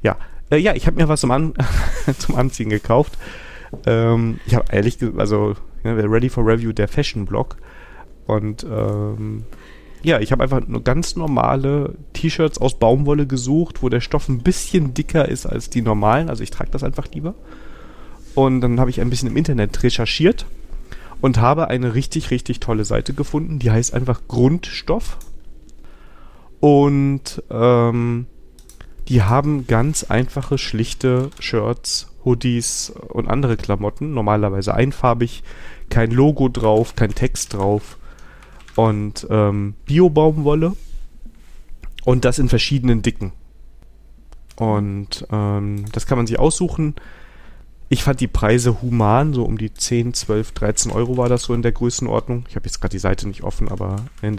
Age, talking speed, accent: 30-49, 150 wpm, German